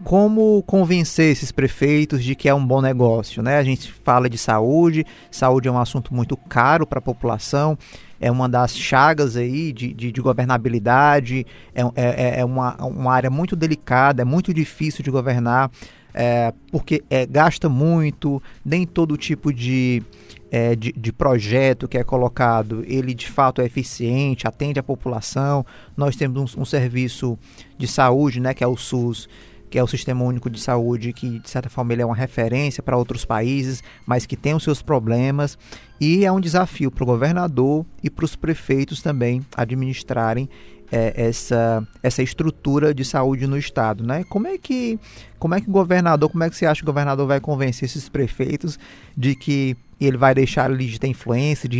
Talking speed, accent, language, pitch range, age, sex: 180 wpm, Brazilian, Portuguese, 120-150 Hz, 20-39, male